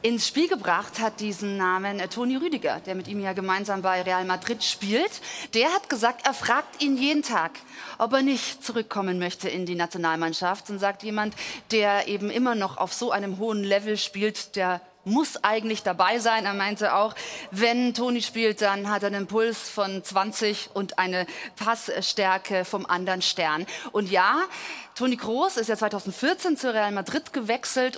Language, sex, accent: German, female, German